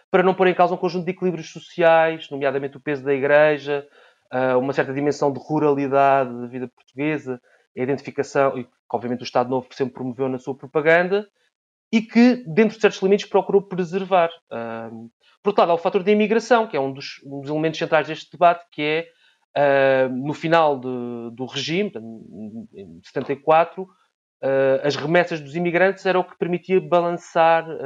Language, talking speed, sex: Portuguese, 170 wpm, male